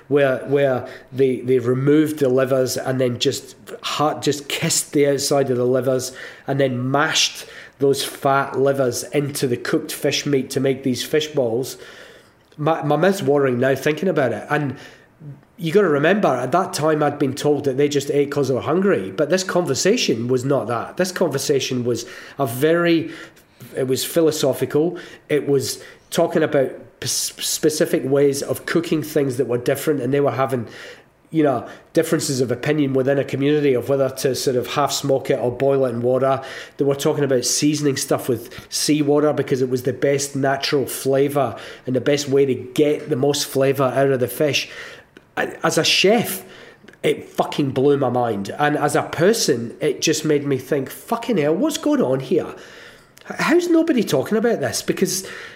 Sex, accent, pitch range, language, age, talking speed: male, British, 135-155 Hz, English, 30-49, 180 wpm